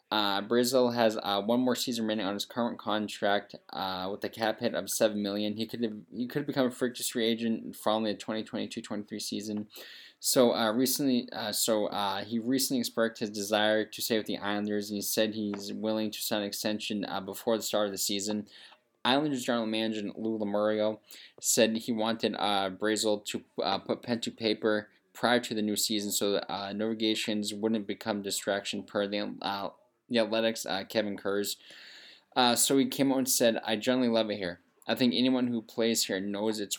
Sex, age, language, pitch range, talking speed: male, 10-29, English, 105-115 Hz, 200 wpm